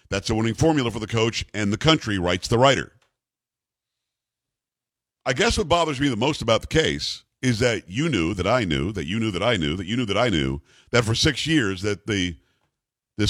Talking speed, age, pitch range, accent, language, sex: 220 wpm, 50-69, 115-145 Hz, American, English, male